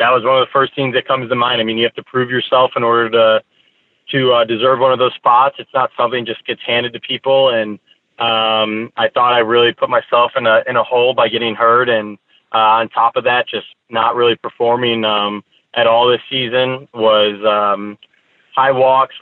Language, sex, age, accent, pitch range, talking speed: English, male, 20-39, American, 110-125 Hz, 220 wpm